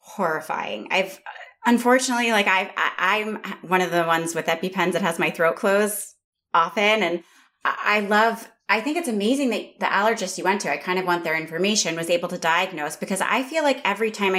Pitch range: 170-235 Hz